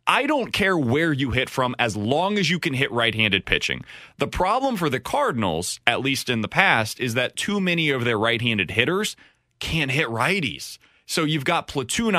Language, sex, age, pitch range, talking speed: English, male, 20-39, 115-165 Hz, 195 wpm